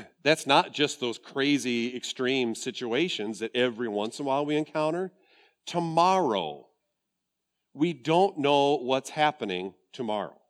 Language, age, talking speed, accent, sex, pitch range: English, 50-69, 125 wpm, American, male, 120-170 Hz